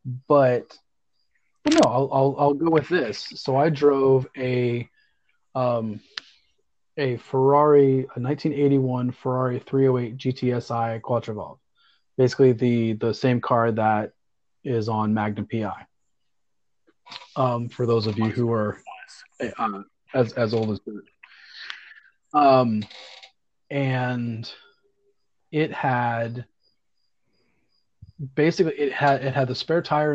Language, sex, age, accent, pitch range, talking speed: English, male, 30-49, American, 115-135 Hz, 130 wpm